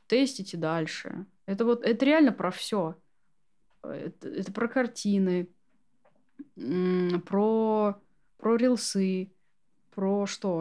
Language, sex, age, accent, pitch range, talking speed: Russian, female, 20-39, native, 180-230 Hz, 100 wpm